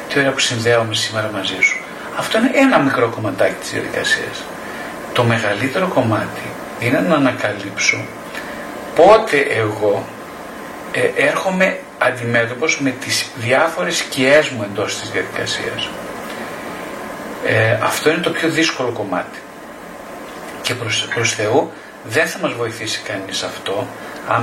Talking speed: 120 wpm